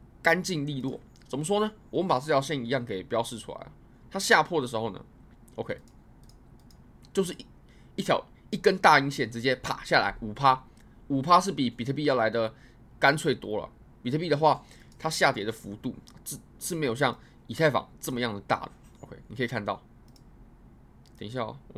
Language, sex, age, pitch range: Chinese, male, 20-39, 115-155 Hz